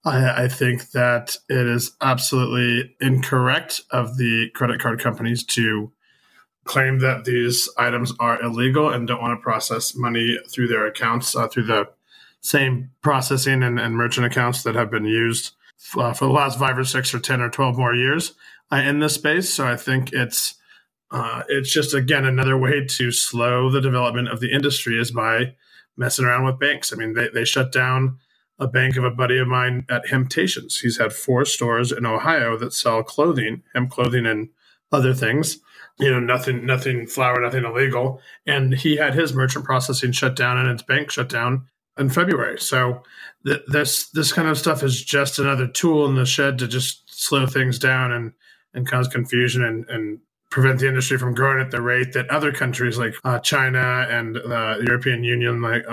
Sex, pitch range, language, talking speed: male, 120-135 Hz, English, 190 wpm